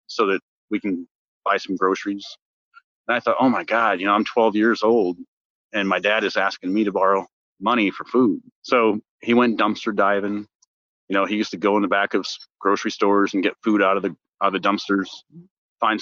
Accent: American